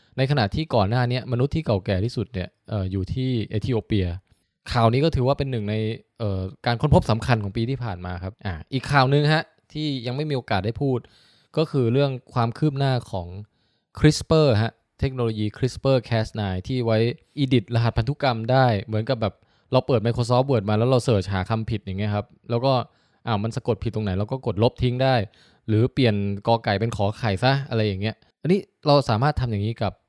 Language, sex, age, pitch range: English, male, 20-39, 110-135 Hz